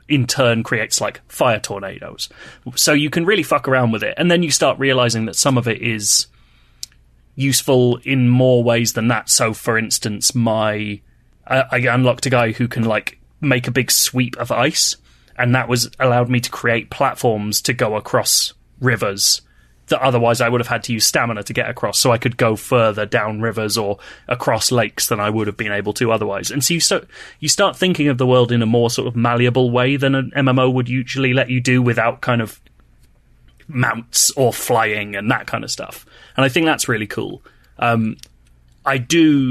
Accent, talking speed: British, 205 wpm